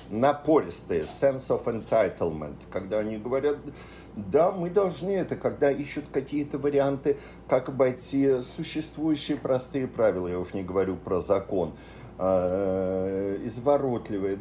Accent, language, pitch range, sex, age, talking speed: native, Russian, 85-135 Hz, male, 50-69, 110 wpm